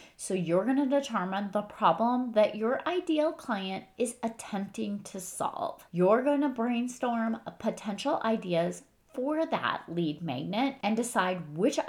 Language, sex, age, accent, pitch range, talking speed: English, female, 30-49, American, 170-230 Hz, 140 wpm